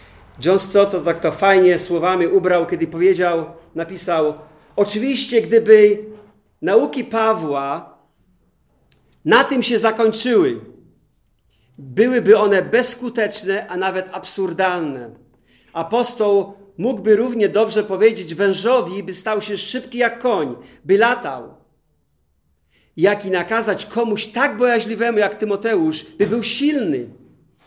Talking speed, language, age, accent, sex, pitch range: 105 wpm, Polish, 40-59, native, male, 160-225 Hz